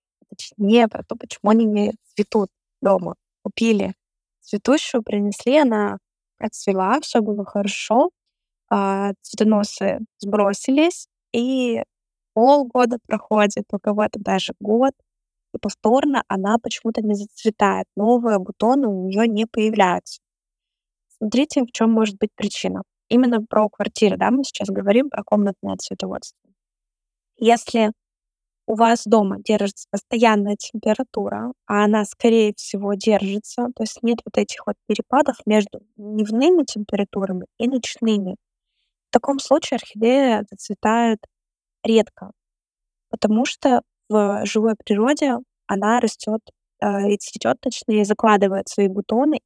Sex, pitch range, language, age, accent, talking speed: female, 205-235 Hz, Russian, 20-39, native, 115 wpm